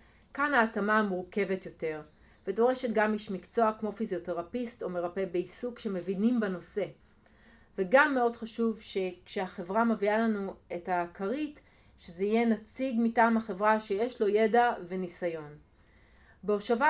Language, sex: Hebrew, female